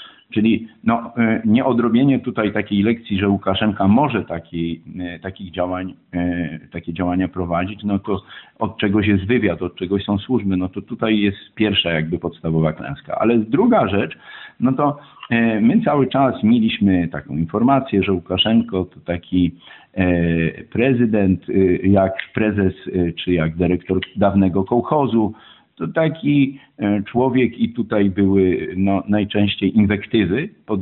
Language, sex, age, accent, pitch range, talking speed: English, male, 50-69, Polish, 95-120 Hz, 125 wpm